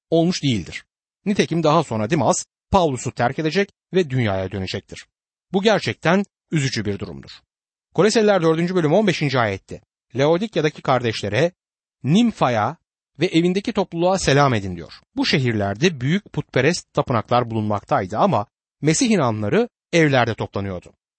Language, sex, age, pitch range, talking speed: Turkish, male, 60-79, 120-185 Hz, 120 wpm